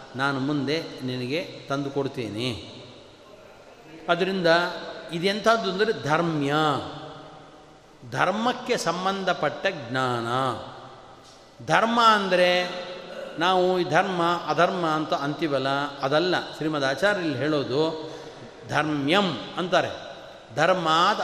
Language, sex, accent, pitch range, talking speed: Kannada, male, native, 150-195 Hz, 75 wpm